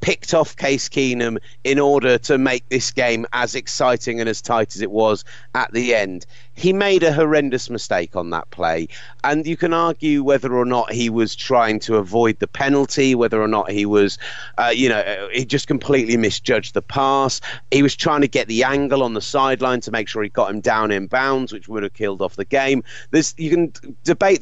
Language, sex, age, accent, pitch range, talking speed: English, male, 30-49, British, 115-135 Hz, 210 wpm